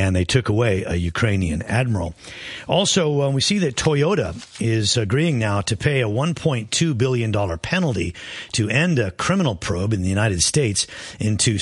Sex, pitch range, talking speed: male, 100-140 Hz, 165 wpm